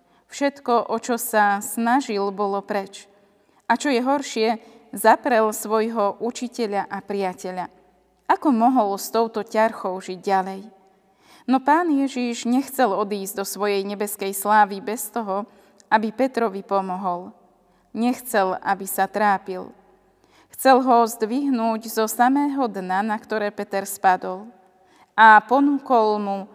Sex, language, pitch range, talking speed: female, Slovak, 200-245 Hz, 120 wpm